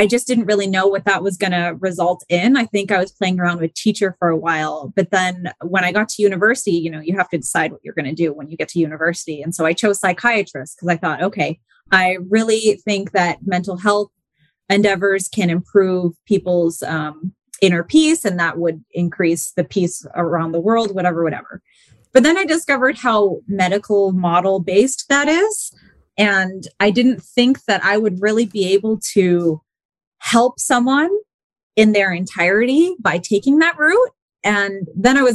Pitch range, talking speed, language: 180-250 Hz, 190 wpm, English